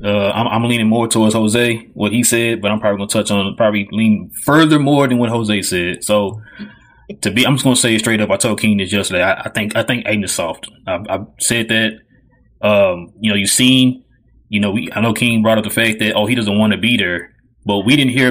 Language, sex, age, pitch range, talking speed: English, male, 20-39, 105-130 Hz, 260 wpm